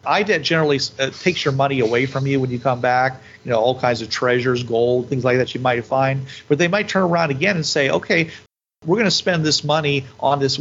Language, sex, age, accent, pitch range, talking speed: English, male, 40-59, American, 130-150 Hz, 245 wpm